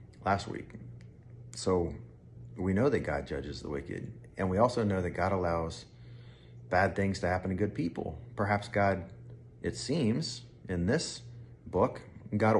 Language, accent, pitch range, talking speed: English, American, 85-120 Hz, 150 wpm